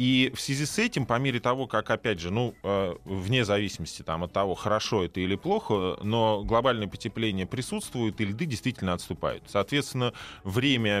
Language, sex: Russian, male